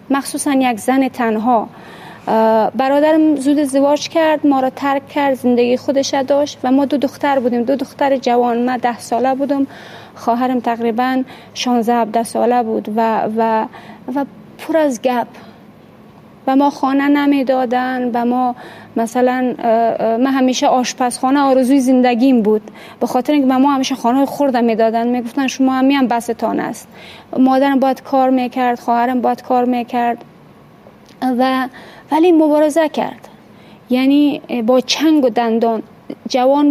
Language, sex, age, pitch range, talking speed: Persian, female, 30-49, 240-280 Hz, 145 wpm